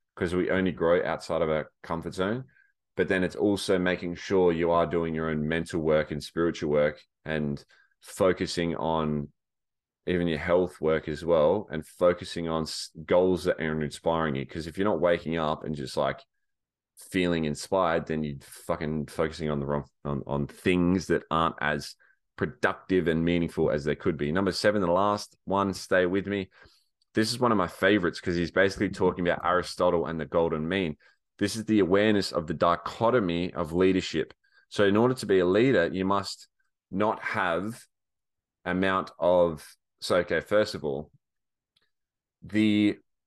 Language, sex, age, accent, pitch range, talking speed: English, male, 20-39, Australian, 80-100 Hz, 175 wpm